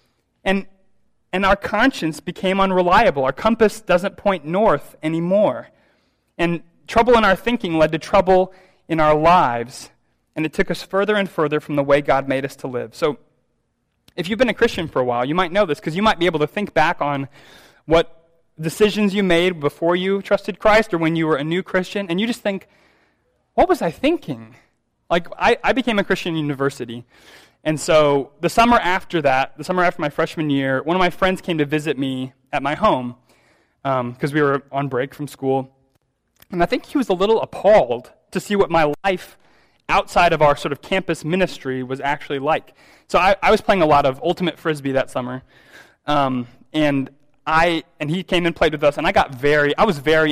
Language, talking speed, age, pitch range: English, 205 wpm, 20-39, 145-190 Hz